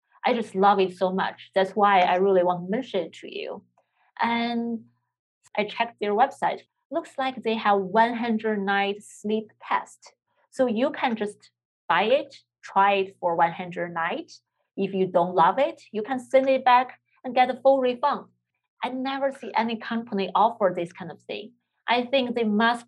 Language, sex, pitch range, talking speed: English, female, 185-235 Hz, 180 wpm